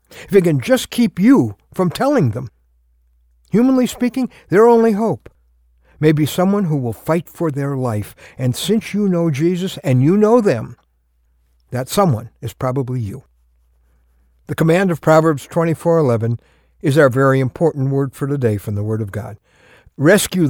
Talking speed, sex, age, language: 165 wpm, male, 60-79, English